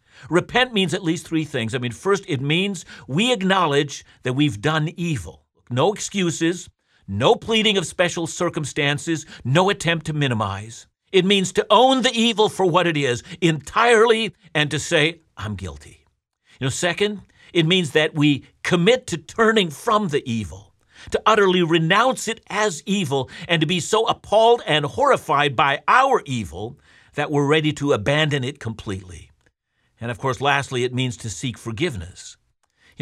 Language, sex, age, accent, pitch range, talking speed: English, male, 50-69, American, 130-180 Hz, 160 wpm